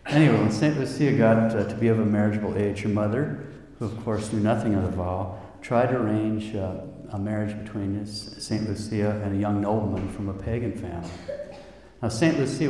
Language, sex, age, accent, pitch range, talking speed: English, male, 50-69, American, 100-115 Hz, 200 wpm